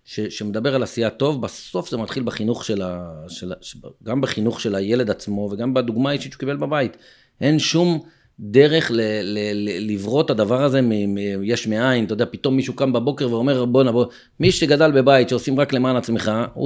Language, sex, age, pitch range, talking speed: Hebrew, male, 40-59, 105-140 Hz, 200 wpm